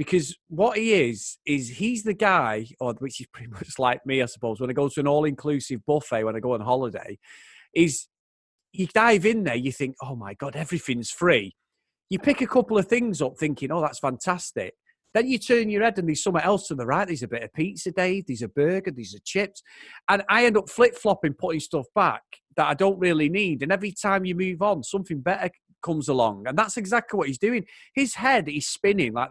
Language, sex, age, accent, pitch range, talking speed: English, male, 30-49, British, 140-205 Hz, 225 wpm